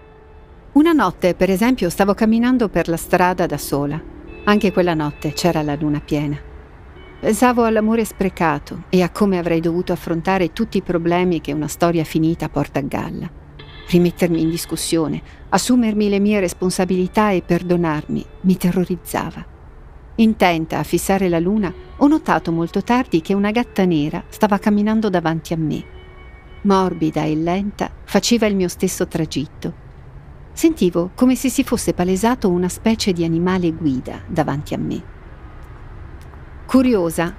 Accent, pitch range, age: native, 155-205 Hz, 50-69